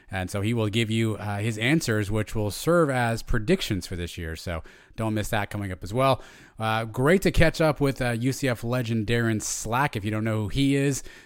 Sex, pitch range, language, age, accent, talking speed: male, 105-130 Hz, English, 30-49, American, 230 wpm